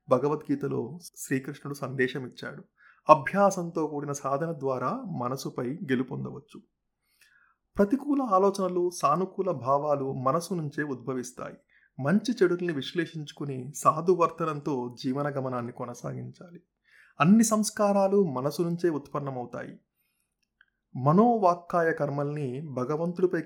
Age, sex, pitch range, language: 30-49, male, 135-180 Hz, Telugu